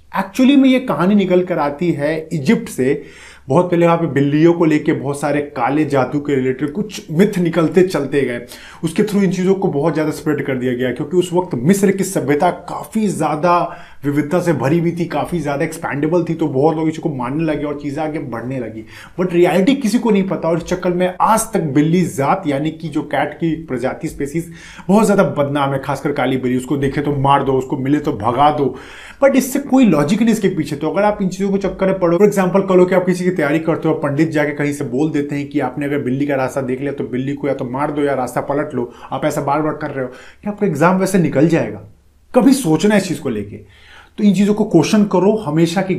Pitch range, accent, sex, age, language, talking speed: 145-190 Hz, native, male, 30-49, Hindi, 235 wpm